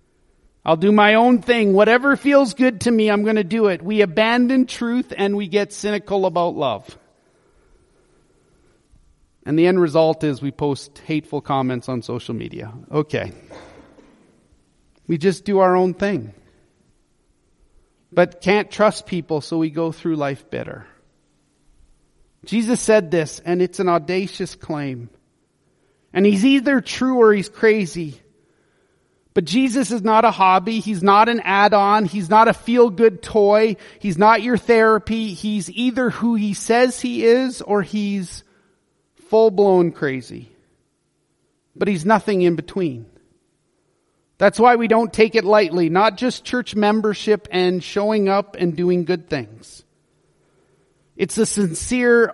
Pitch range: 165-220 Hz